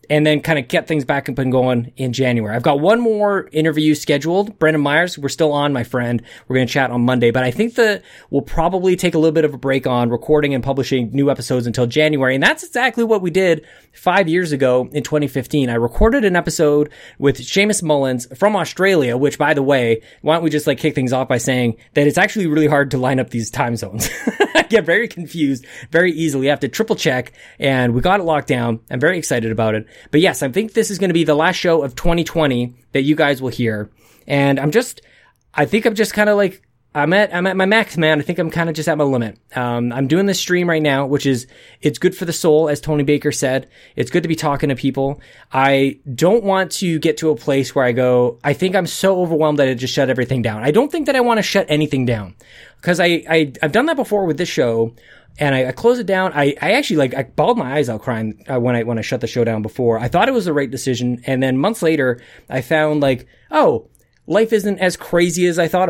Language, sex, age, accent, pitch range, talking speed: English, male, 20-39, American, 130-175 Hz, 250 wpm